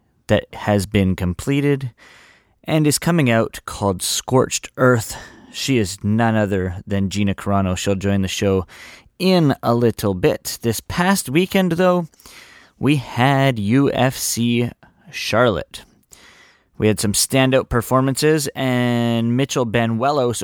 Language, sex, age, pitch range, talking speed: English, male, 20-39, 105-130 Hz, 125 wpm